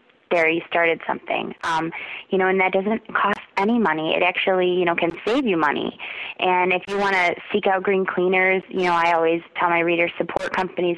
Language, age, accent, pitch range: English, 20-39, American, 170-185 Hz